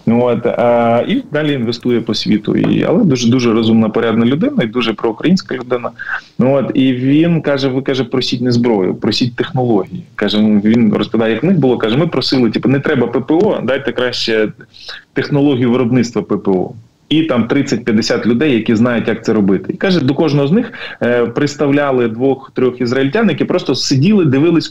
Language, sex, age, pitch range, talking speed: Ukrainian, male, 20-39, 115-140 Hz, 170 wpm